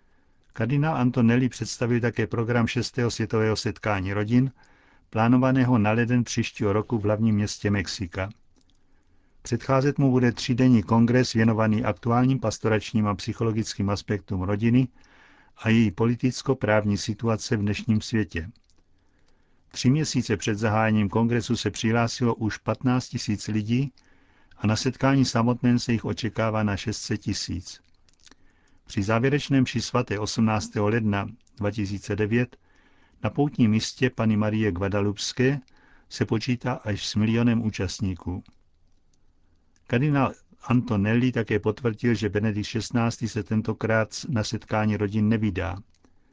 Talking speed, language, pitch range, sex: 115 wpm, Czech, 105-120 Hz, male